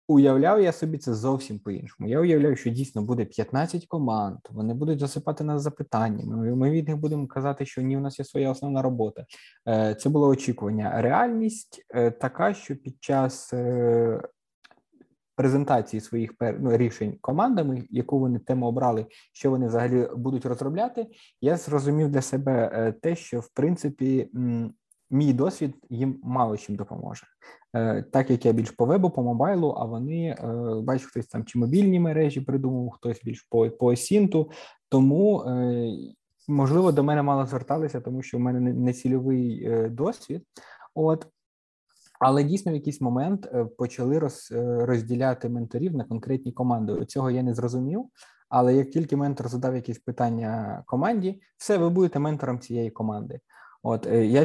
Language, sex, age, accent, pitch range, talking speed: Ukrainian, male, 20-39, native, 120-145 Hz, 155 wpm